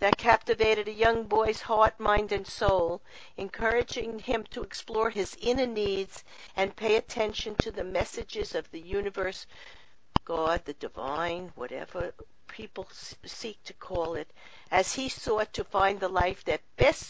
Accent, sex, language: American, female, English